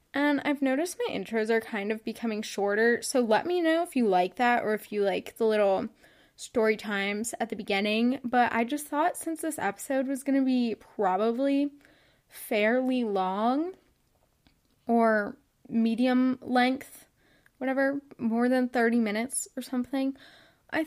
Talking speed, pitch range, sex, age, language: 155 wpm, 215-280 Hz, female, 10-29, English